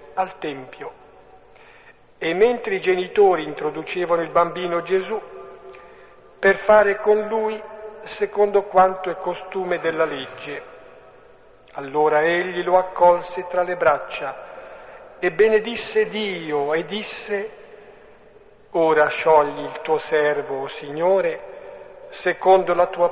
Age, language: 50-69, Italian